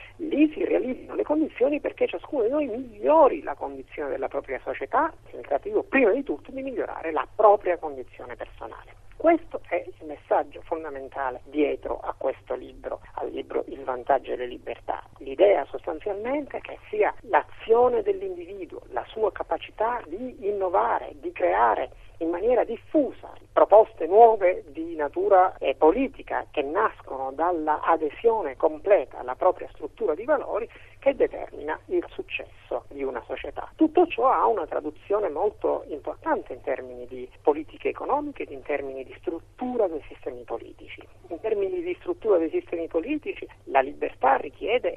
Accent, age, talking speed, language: native, 50-69, 150 wpm, Italian